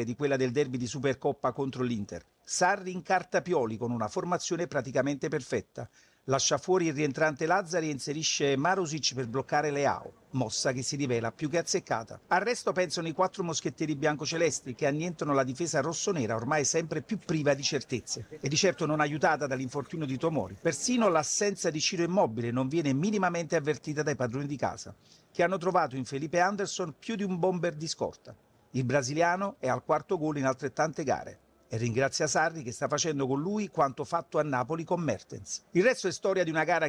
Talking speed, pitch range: 185 wpm, 130-175 Hz